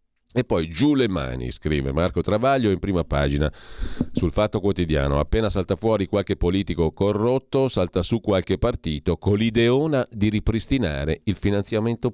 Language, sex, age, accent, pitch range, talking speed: Italian, male, 40-59, native, 85-110 Hz, 150 wpm